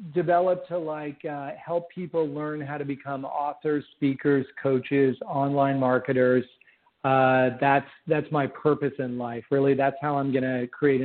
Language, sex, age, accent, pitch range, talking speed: English, male, 50-69, American, 130-150 Hz, 155 wpm